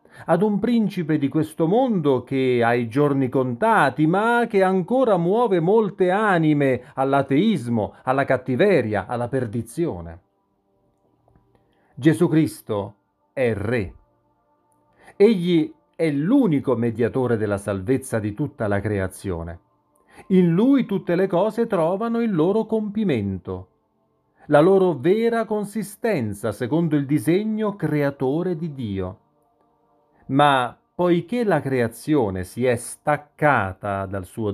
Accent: native